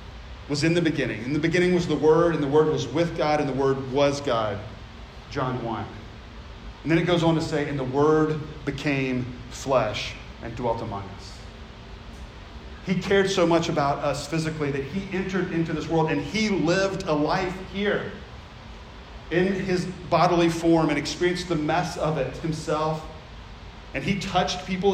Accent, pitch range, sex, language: American, 135-170 Hz, male, English